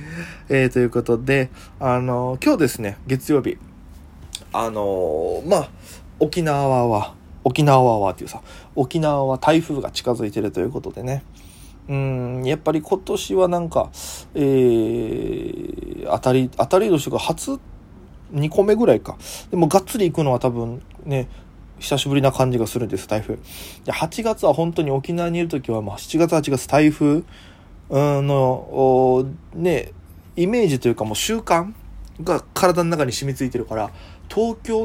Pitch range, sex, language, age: 105-155 Hz, male, Japanese, 20-39